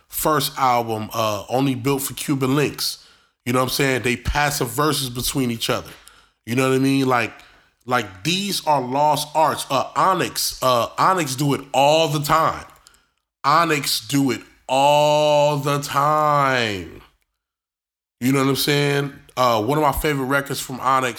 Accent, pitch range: American, 120-150 Hz